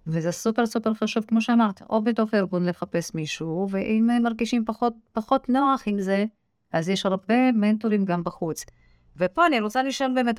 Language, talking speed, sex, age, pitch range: Hebrew, 180 wpm, female, 50-69, 175-235 Hz